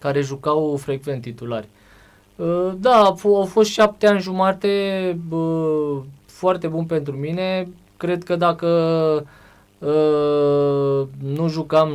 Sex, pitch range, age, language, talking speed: male, 120-165 Hz, 20-39, Romanian, 100 wpm